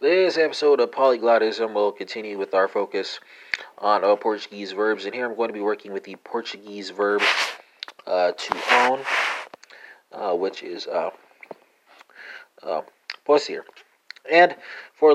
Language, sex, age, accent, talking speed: English, male, 30-49, American, 140 wpm